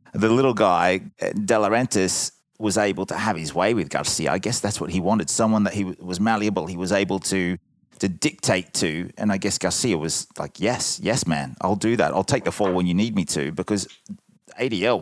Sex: male